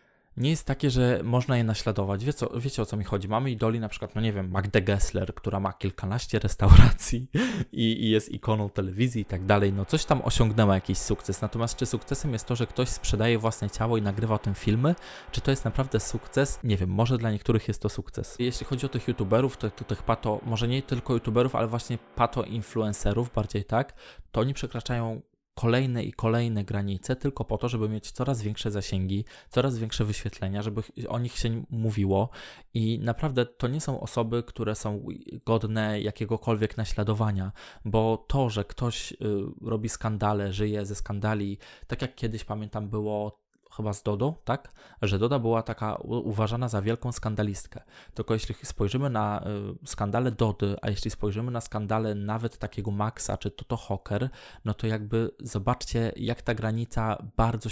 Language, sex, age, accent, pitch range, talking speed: Polish, male, 20-39, native, 105-120 Hz, 185 wpm